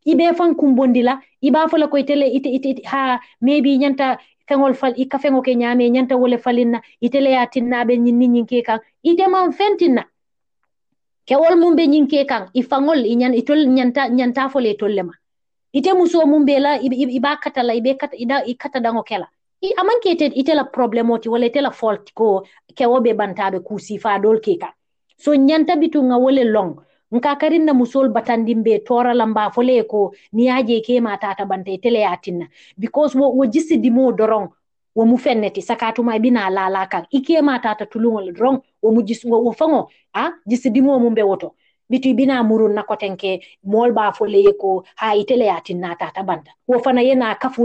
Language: English